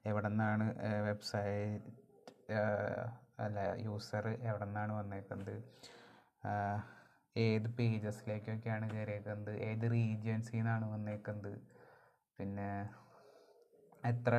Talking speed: 65 wpm